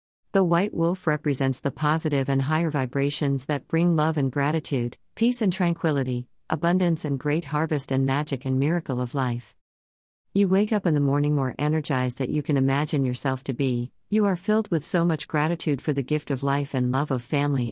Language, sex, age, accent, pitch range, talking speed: English, female, 50-69, American, 130-160 Hz, 195 wpm